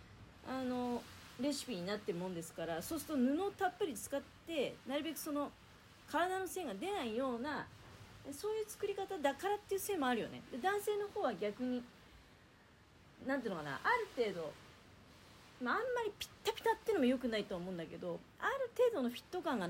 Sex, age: female, 40-59